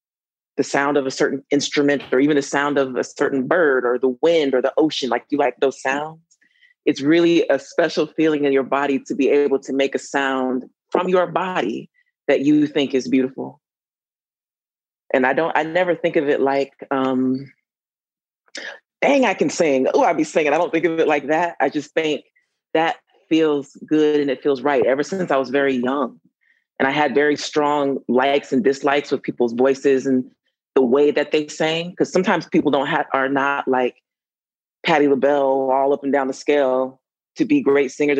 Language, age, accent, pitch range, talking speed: English, 30-49, American, 135-155 Hz, 200 wpm